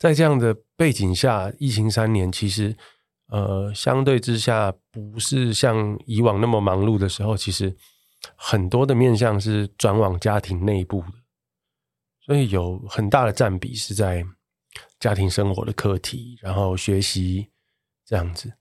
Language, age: Chinese, 20-39